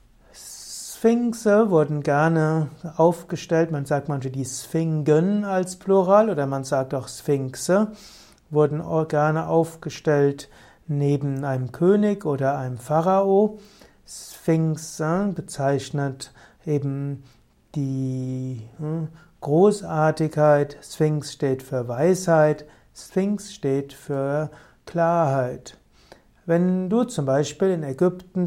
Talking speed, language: 95 wpm, German